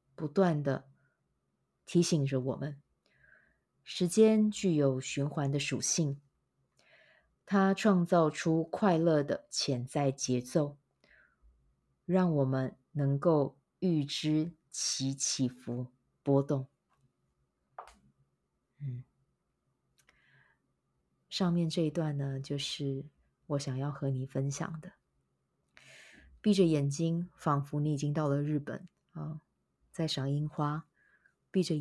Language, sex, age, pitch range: Chinese, female, 20-39, 130-155 Hz